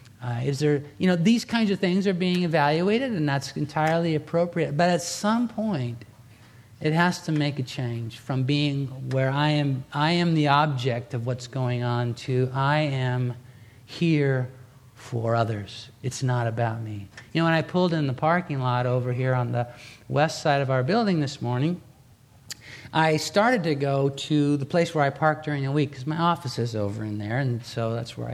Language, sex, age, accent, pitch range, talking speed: English, male, 50-69, American, 120-150 Hz, 195 wpm